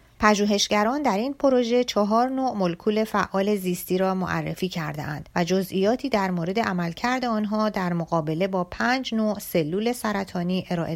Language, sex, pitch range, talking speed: Persian, female, 170-210 Hz, 150 wpm